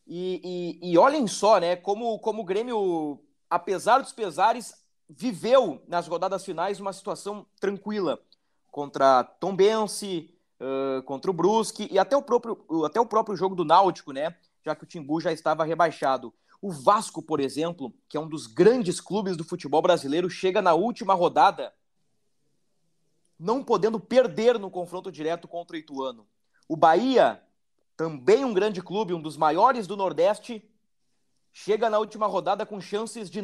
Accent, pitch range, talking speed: Brazilian, 170-220 Hz, 160 wpm